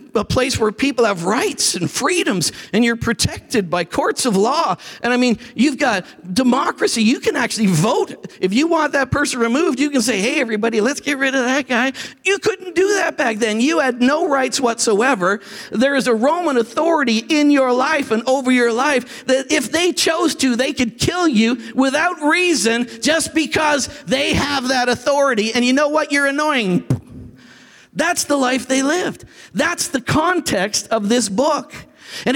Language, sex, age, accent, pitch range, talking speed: English, male, 50-69, American, 235-310 Hz, 185 wpm